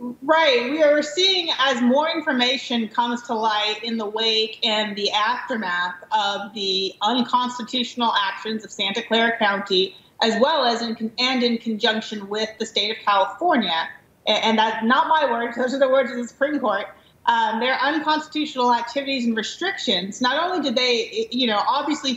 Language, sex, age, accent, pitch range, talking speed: English, female, 30-49, American, 220-275 Hz, 165 wpm